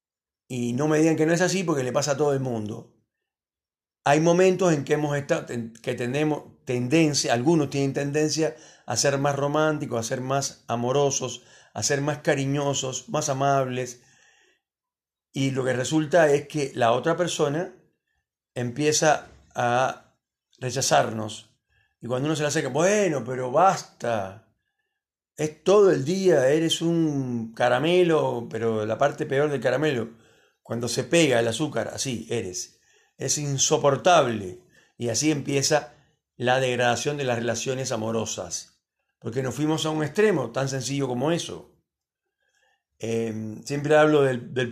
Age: 40-59